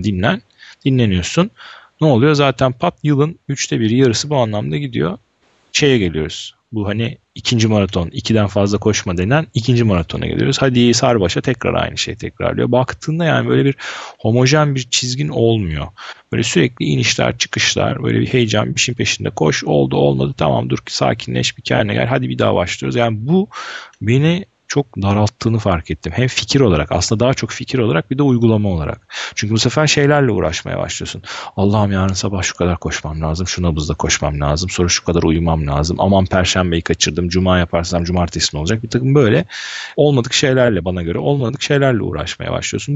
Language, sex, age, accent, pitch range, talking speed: Turkish, male, 40-59, native, 90-135 Hz, 170 wpm